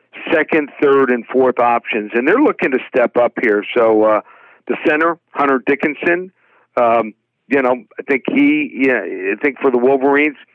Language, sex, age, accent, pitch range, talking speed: English, male, 50-69, American, 125-150 Hz, 170 wpm